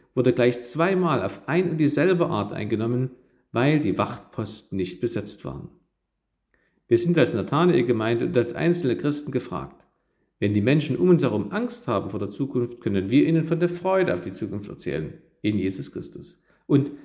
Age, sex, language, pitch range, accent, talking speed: 50-69, male, German, 115-155 Hz, German, 175 wpm